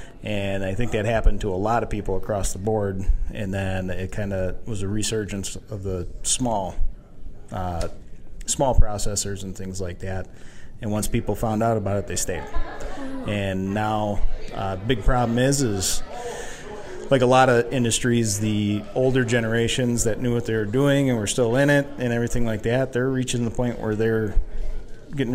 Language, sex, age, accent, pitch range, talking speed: English, male, 30-49, American, 95-120 Hz, 180 wpm